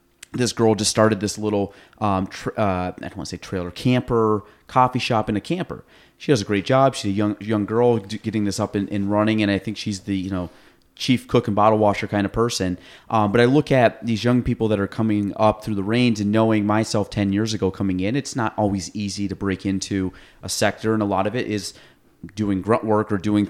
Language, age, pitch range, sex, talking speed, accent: English, 30-49, 100-115 Hz, male, 245 wpm, American